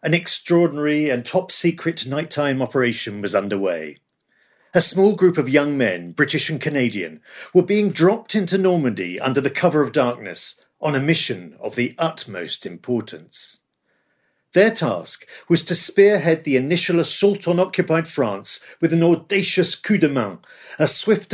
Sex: male